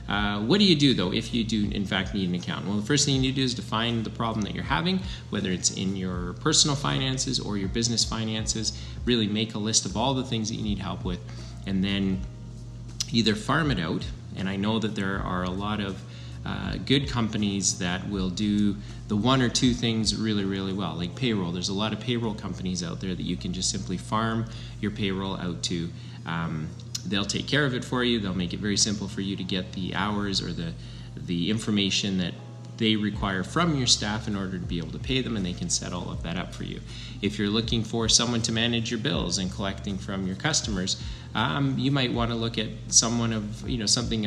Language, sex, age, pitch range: English, male, 30-49, 95-115 Hz